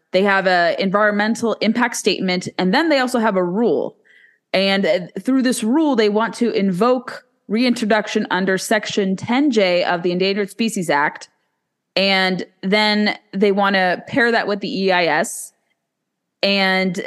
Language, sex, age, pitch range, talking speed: English, female, 20-39, 185-220 Hz, 150 wpm